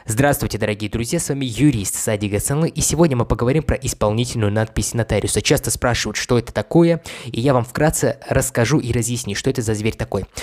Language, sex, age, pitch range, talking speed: Russian, male, 20-39, 110-135 Hz, 190 wpm